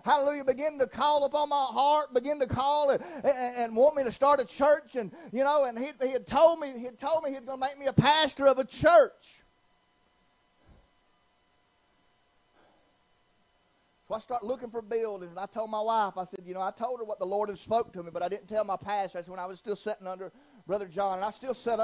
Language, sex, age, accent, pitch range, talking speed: English, male, 40-59, American, 205-265 Hz, 235 wpm